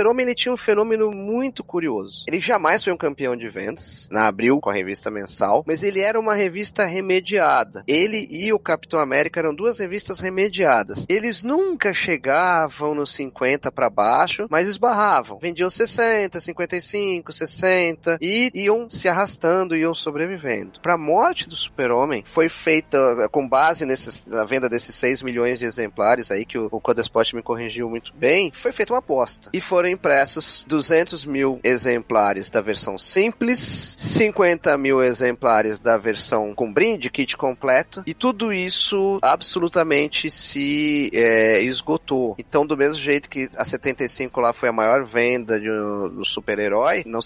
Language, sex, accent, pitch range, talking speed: Portuguese, male, Brazilian, 125-195 Hz, 160 wpm